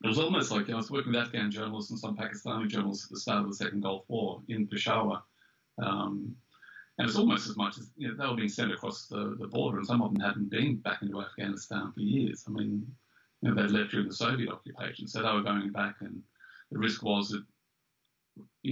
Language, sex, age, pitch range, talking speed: English, male, 30-49, 100-110 Hz, 240 wpm